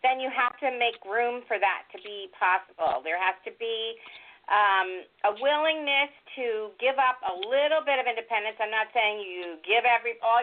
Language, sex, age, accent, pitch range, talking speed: English, female, 40-59, American, 225-300 Hz, 190 wpm